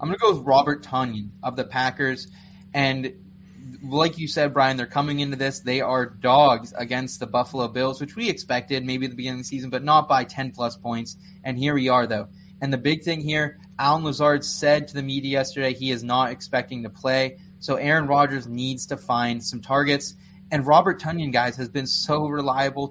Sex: male